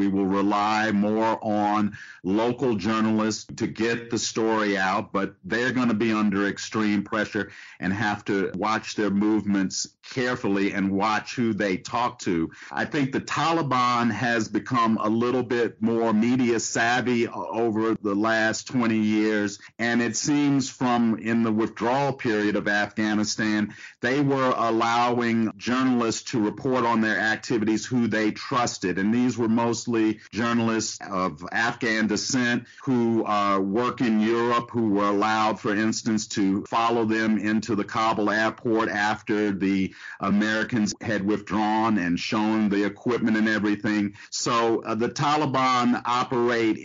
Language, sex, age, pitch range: English, male, 50-69, 105-120 Hz